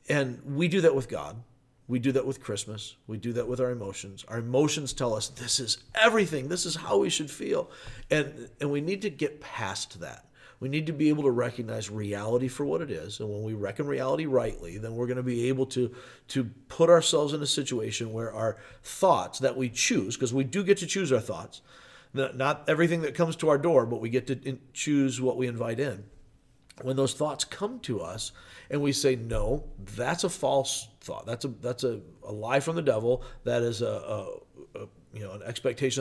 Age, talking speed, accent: 50-69, 220 wpm, American